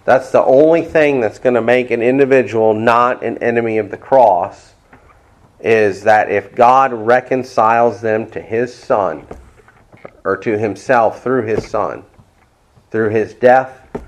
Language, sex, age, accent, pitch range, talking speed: English, male, 40-59, American, 105-135 Hz, 145 wpm